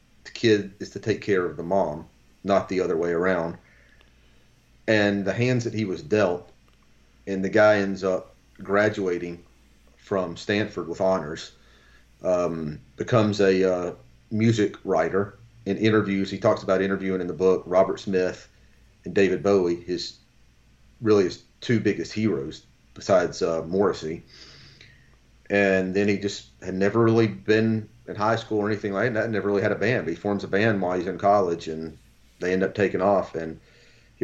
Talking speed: 170 wpm